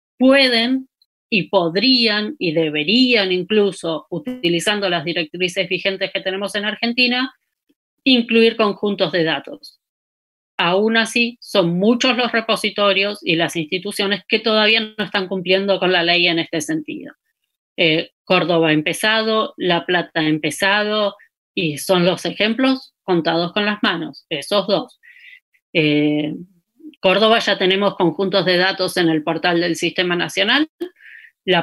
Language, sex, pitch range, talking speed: Spanish, female, 170-225 Hz, 135 wpm